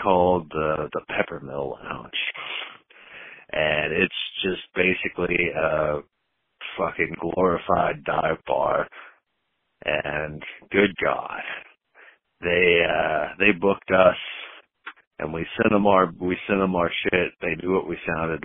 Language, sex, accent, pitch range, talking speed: English, male, American, 80-95 Hz, 120 wpm